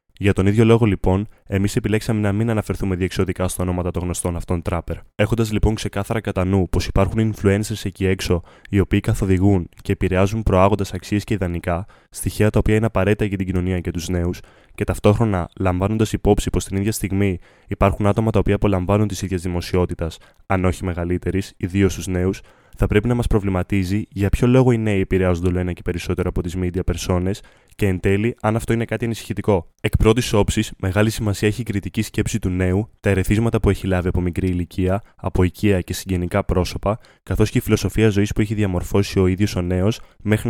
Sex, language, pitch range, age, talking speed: male, English, 90-105 Hz, 20-39, 195 wpm